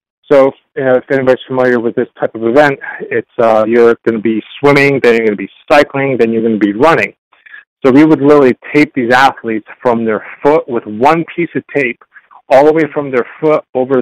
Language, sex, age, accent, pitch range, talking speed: English, male, 40-59, American, 115-140 Hz, 225 wpm